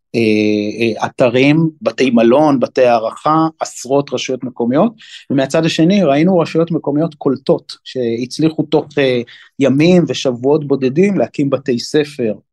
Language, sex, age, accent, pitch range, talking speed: Hebrew, male, 30-49, native, 125-160 Hz, 120 wpm